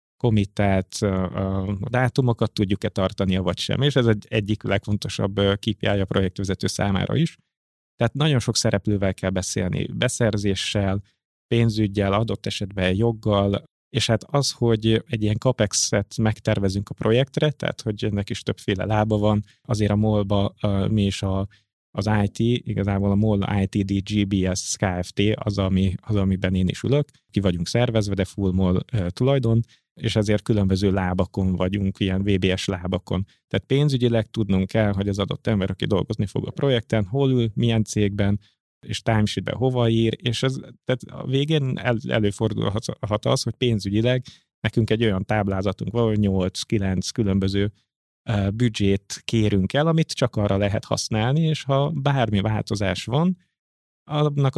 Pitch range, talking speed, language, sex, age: 100-120 Hz, 145 wpm, Hungarian, male, 30-49